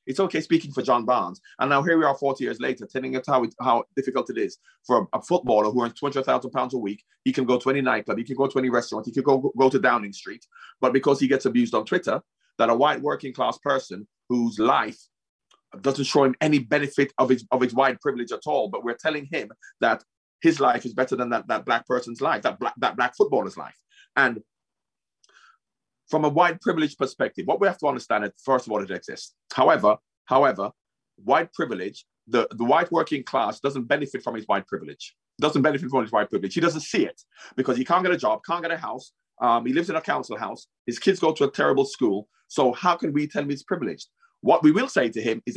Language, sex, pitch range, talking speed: English, male, 125-165 Hz, 235 wpm